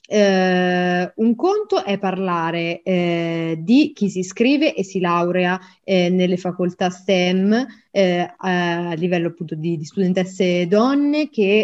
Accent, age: native, 20-39